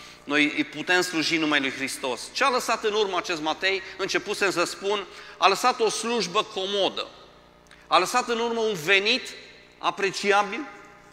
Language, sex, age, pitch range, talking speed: Romanian, male, 40-59, 160-205 Hz, 150 wpm